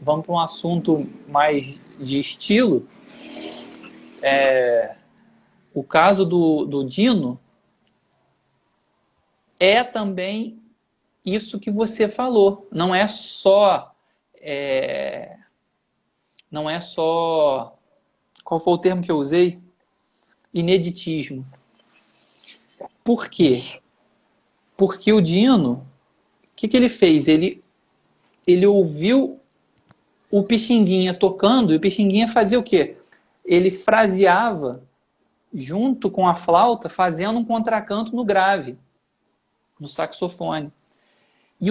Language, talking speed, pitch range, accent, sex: Portuguese, 95 wpm, 170-230 Hz, Brazilian, male